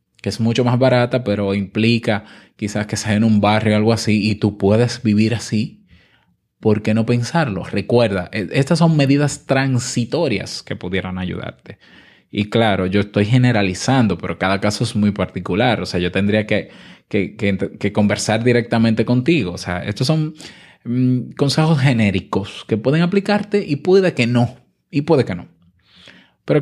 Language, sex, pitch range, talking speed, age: Spanish, male, 105-130 Hz, 165 wpm, 20-39